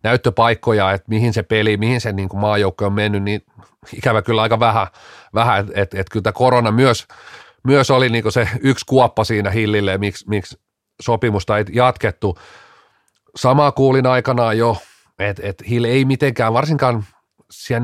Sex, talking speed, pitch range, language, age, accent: male, 160 wpm, 100-125 Hz, Finnish, 30-49, native